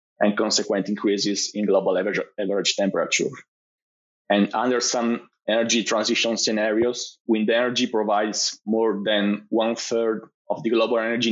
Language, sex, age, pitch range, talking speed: English, male, 30-49, 105-125 Hz, 125 wpm